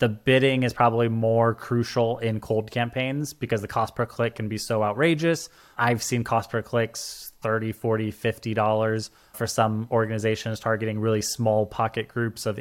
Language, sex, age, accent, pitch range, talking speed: English, male, 20-39, American, 110-130 Hz, 165 wpm